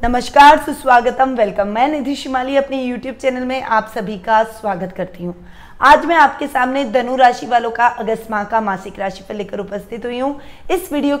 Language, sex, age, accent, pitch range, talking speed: Hindi, female, 20-39, native, 220-275 Hz, 70 wpm